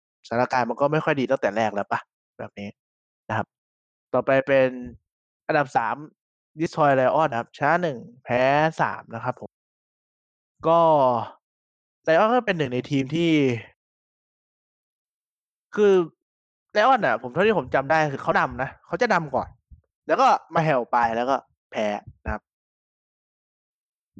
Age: 20-39